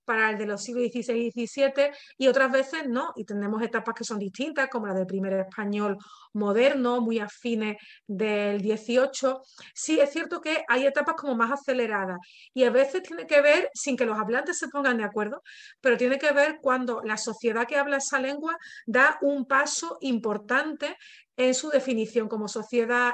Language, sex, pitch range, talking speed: Spanish, female, 225-275 Hz, 185 wpm